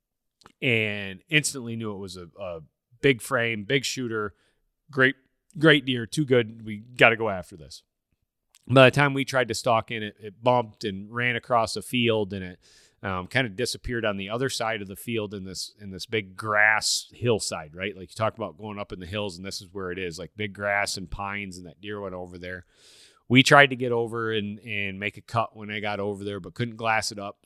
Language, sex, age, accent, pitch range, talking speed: English, male, 30-49, American, 100-120 Hz, 225 wpm